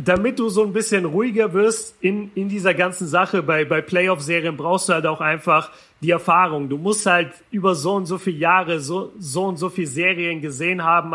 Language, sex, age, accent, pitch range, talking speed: German, male, 40-59, German, 165-195 Hz, 210 wpm